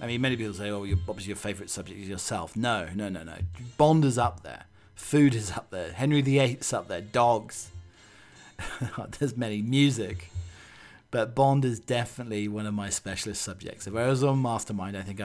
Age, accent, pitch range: 40-59, British, 100-125 Hz